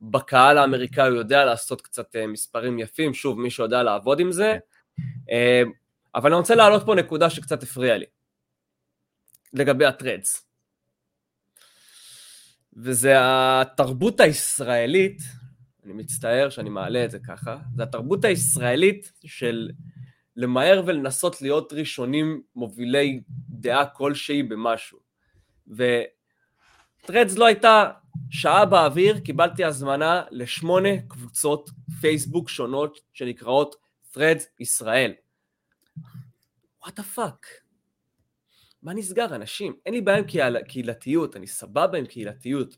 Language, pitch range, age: Hebrew, 125-170 Hz, 20-39